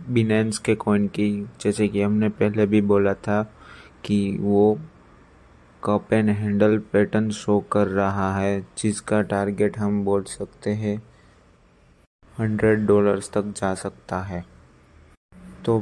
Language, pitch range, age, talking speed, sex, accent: Hindi, 100-110 Hz, 20-39, 125 wpm, male, native